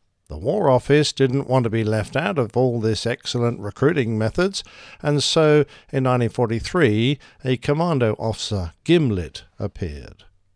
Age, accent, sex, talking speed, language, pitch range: 50-69, British, male, 135 wpm, English, 100-140 Hz